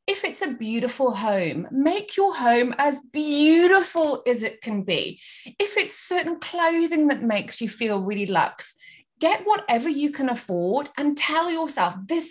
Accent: British